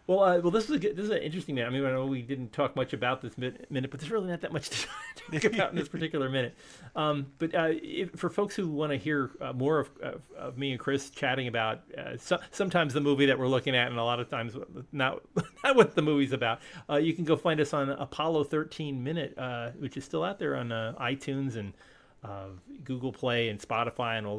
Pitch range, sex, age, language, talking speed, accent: 115-145 Hz, male, 40-59, English, 250 wpm, American